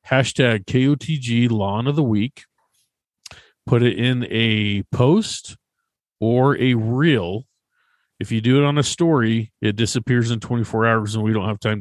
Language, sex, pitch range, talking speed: English, male, 105-135 Hz, 175 wpm